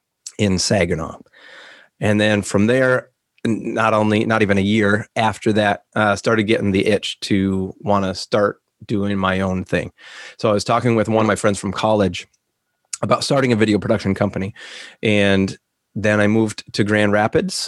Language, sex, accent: English, male, American